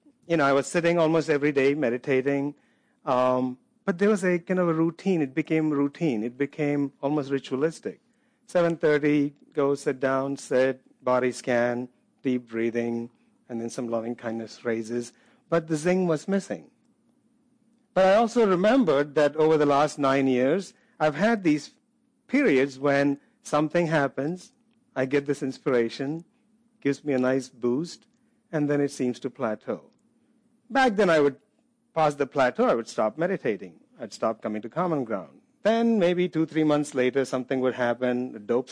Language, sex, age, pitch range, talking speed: English, male, 50-69, 135-210 Hz, 160 wpm